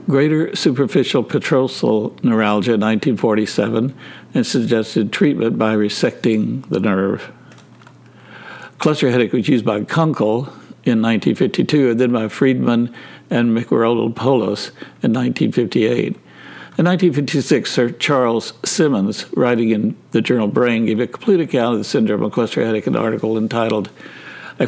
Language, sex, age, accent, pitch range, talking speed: English, male, 60-79, American, 110-135 Hz, 130 wpm